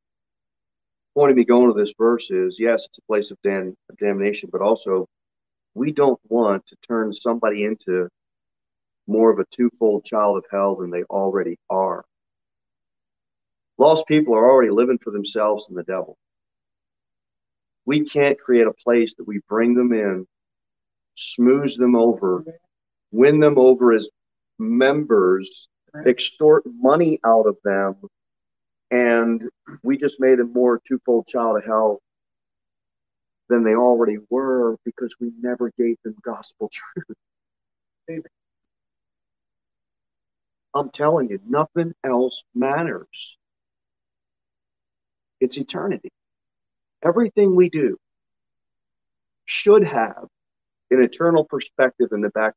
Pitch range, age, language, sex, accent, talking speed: 105-135 Hz, 40-59, English, male, American, 125 wpm